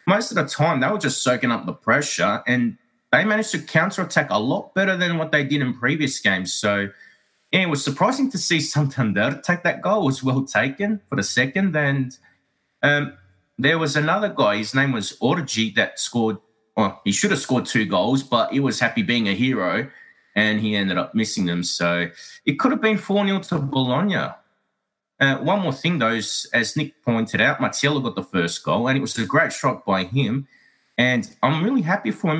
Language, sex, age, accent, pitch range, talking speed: English, male, 30-49, Australian, 115-160 Hz, 210 wpm